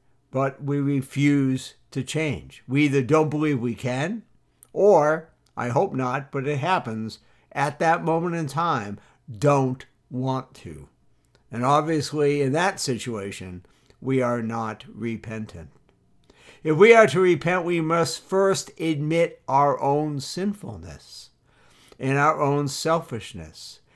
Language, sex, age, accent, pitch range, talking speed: English, male, 60-79, American, 130-165 Hz, 130 wpm